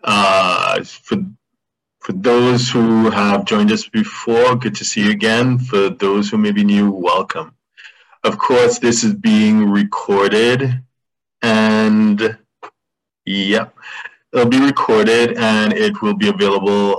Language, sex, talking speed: English, male, 130 wpm